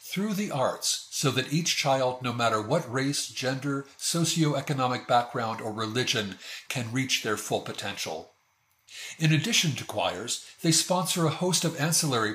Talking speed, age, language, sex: 150 wpm, 50-69, English, male